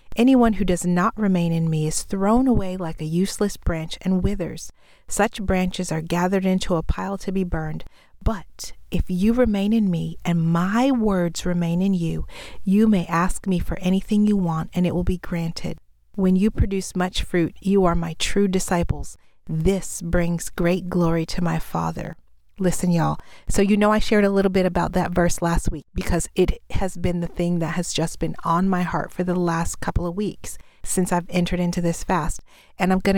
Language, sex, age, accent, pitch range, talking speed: English, female, 40-59, American, 170-195 Hz, 200 wpm